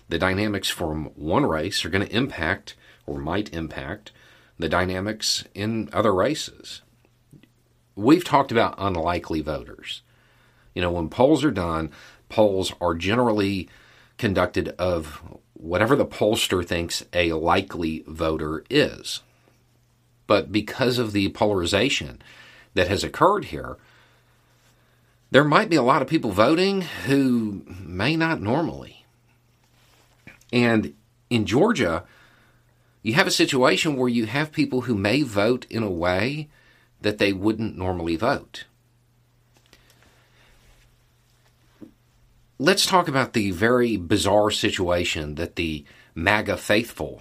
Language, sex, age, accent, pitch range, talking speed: English, male, 40-59, American, 95-120 Hz, 120 wpm